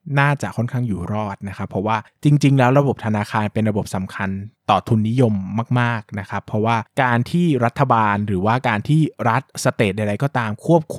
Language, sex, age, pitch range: Thai, male, 20-39, 110-145 Hz